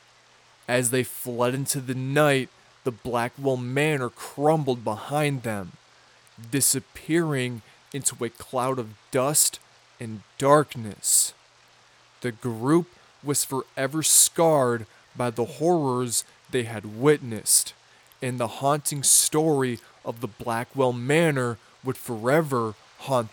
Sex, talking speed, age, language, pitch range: male, 110 wpm, 20-39, English, 120-140 Hz